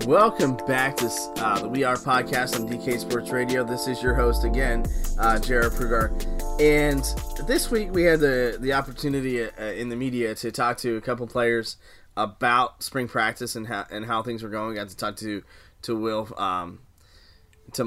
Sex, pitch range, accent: male, 105-125 Hz, American